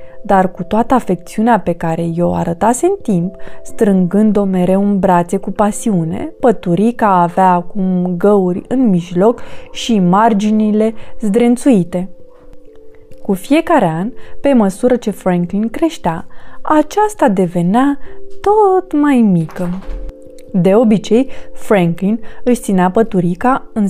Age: 20-39